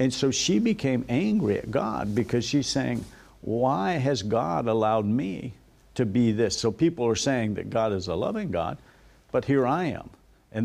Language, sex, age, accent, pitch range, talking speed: English, male, 50-69, American, 100-135 Hz, 185 wpm